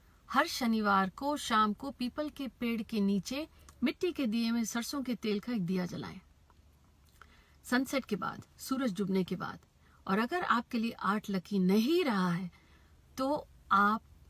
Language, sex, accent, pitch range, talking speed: Hindi, female, native, 185-245 Hz, 165 wpm